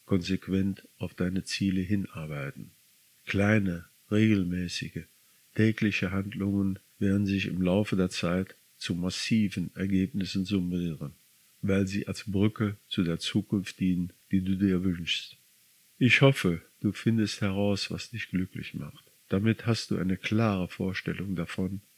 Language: German